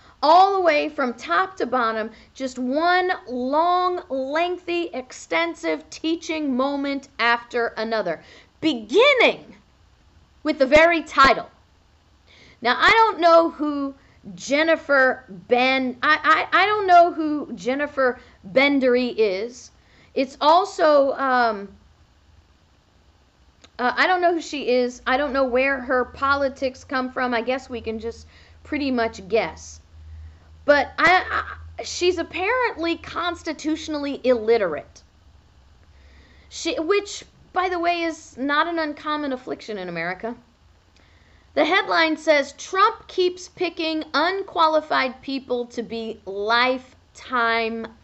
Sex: female